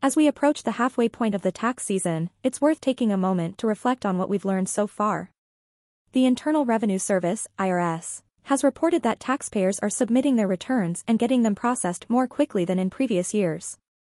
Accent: American